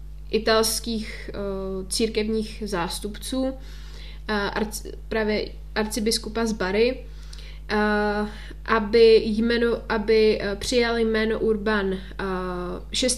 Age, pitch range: 20-39, 200-240 Hz